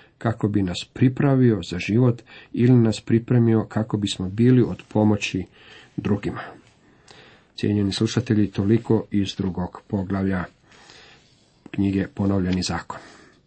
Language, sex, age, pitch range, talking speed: Croatian, male, 50-69, 105-125 Hz, 105 wpm